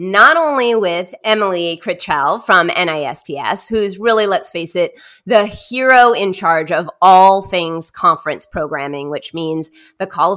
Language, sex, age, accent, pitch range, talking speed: English, female, 30-49, American, 170-235 Hz, 145 wpm